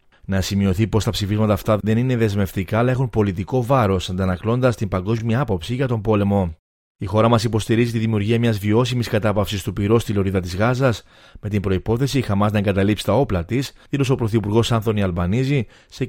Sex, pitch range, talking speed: male, 100-125 Hz, 190 wpm